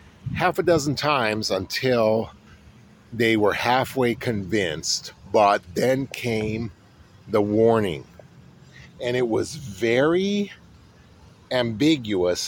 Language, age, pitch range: English, 50-69, 100-130 Hz